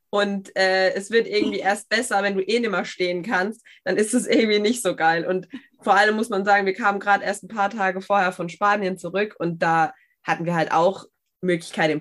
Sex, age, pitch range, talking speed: female, 20-39, 185-235 Hz, 230 wpm